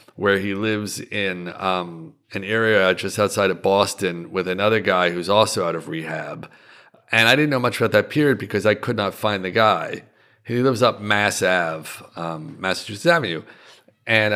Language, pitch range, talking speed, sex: English, 95-115 Hz, 180 wpm, male